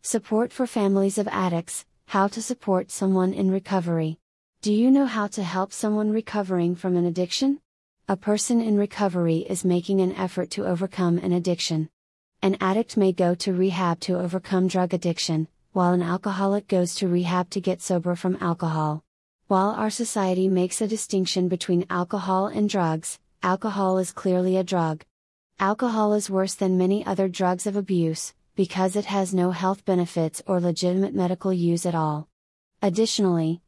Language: English